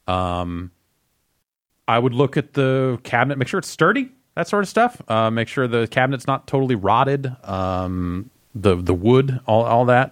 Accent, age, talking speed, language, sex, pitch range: American, 30-49, 180 wpm, English, male, 100-120 Hz